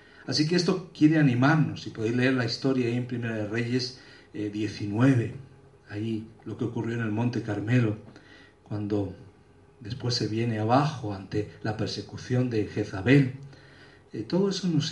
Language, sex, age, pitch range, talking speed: Spanish, male, 50-69, 105-135 Hz, 155 wpm